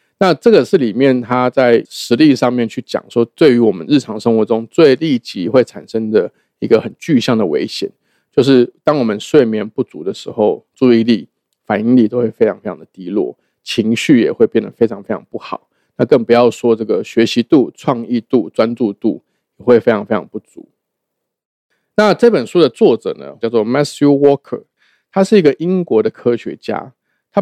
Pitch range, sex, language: 115-145 Hz, male, Chinese